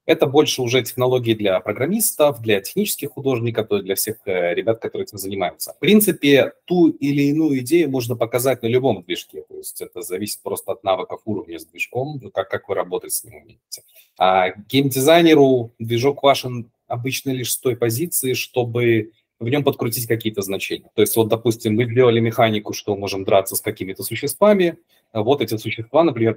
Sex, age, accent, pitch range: male, 30-49, native, 115-155 Hz